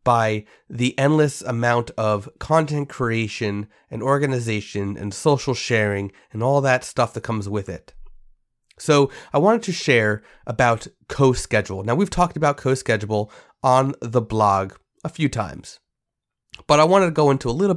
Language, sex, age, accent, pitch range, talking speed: English, male, 30-49, American, 105-140 Hz, 160 wpm